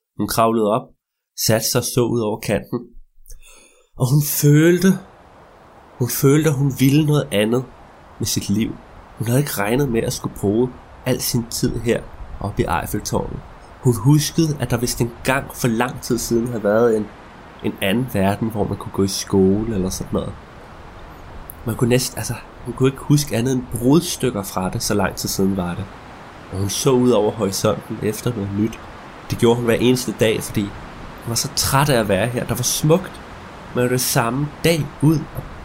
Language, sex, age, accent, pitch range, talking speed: Danish, male, 20-39, native, 105-140 Hz, 195 wpm